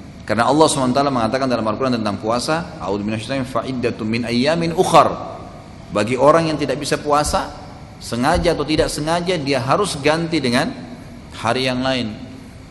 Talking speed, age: 130 wpm, 30-49